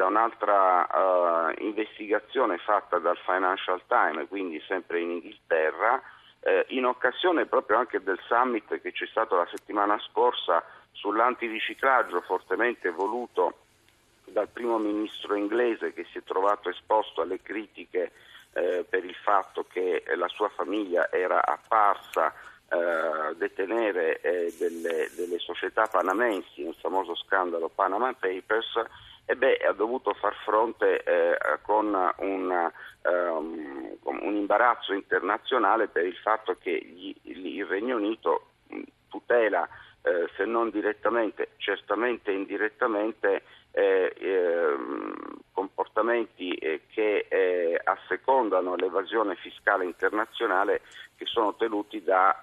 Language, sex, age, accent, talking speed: Italian, male, 50-69, native, 120 wpm